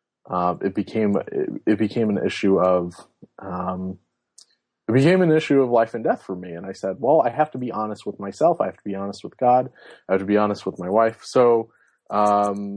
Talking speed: 225 wpm